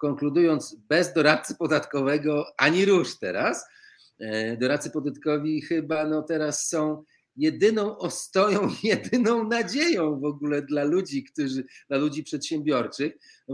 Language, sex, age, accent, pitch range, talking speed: Polish, male, 40-59, native, 125-155 Hz, 115 wpm